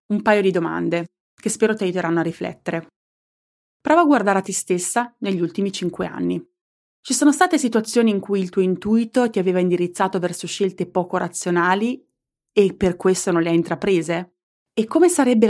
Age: 30-49